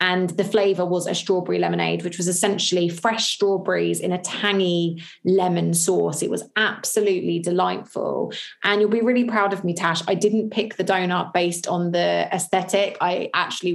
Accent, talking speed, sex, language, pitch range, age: British, 175 wpm, female, English, 175-205 Hz, 20-39